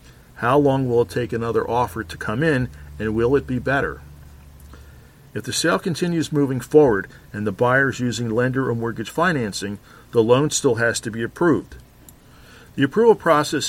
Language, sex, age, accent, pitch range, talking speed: English, male, 50-69, American, 110-135 Hz, 175 wpm